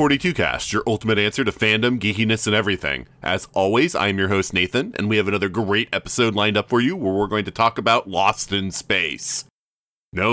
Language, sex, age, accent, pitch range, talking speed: English, male, 20-39, American, 95-110 Hz, 205 wpm